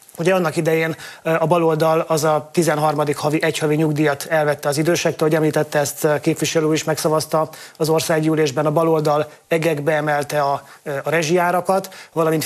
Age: 30-49